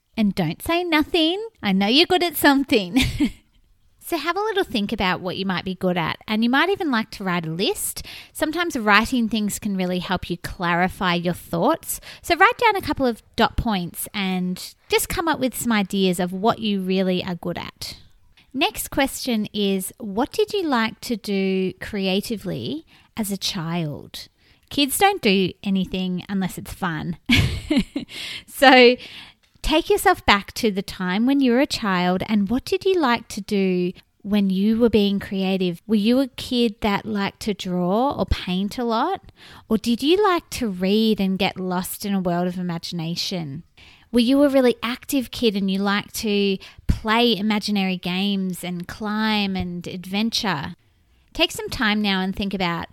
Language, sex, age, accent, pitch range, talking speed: English, female, 30-49, Australian, 190-260 Hz, 180 wpm